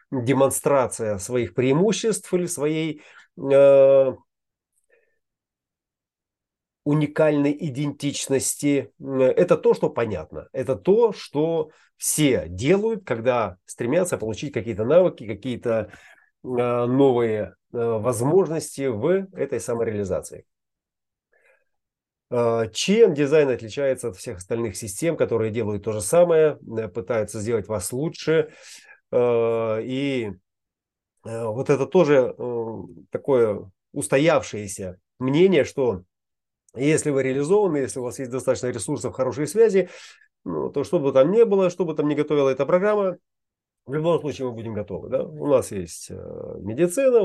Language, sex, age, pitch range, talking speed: Russian, male, 30-49, 115-175 Hz, 115 wpm